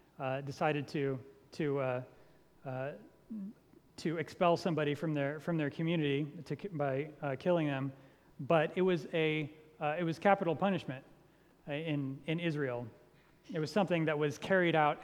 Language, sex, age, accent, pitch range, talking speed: English, male, 30-49, American, 145-170 Hz, 150 wpm